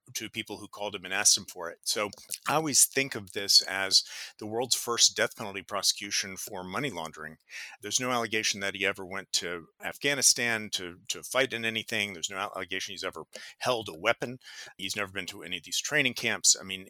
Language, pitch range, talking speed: English, 95-120 Hz, 210 wpm